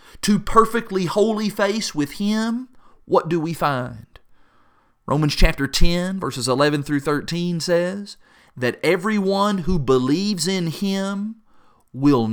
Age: 40-59